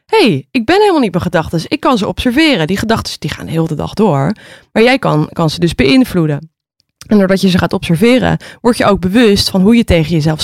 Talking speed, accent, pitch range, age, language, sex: 245 wpm, Dutch, 155-190 Hz, 20-39, Dutch, female